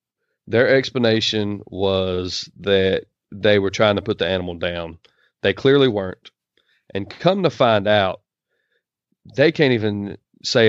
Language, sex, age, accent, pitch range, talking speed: English, male, 30-49, American, 95-115 Hz, 135 wpm